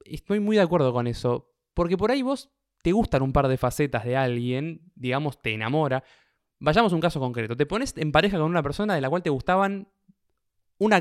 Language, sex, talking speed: Spanish, male, 215 wpm